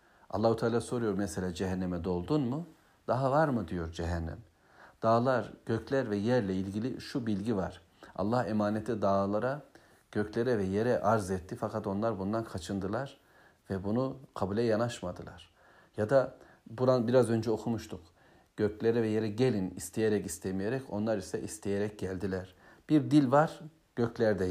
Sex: male